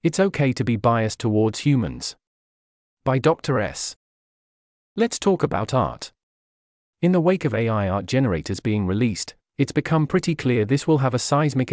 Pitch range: 105-145 Hz